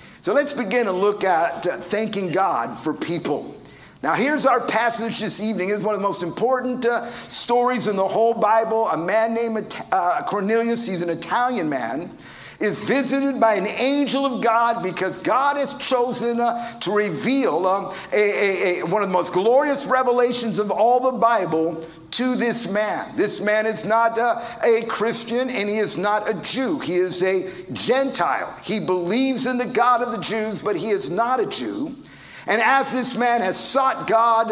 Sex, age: male, 50-69